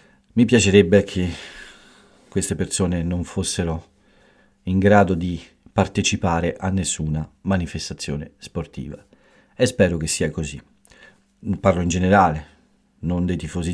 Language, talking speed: Italian, 115 wpm